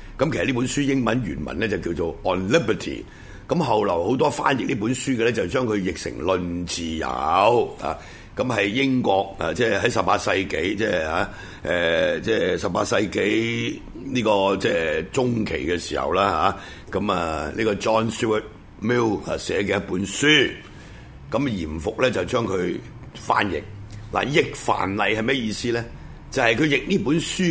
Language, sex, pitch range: Chinese, male, 85-130 Hz